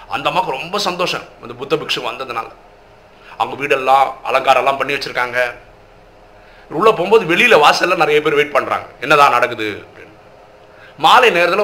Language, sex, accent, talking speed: Tamil, male, native, 135 wpm